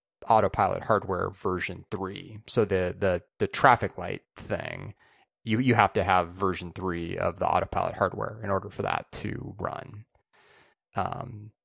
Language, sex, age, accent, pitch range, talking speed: English, male, 20-39, American, 90-105 Hz, 150 wpm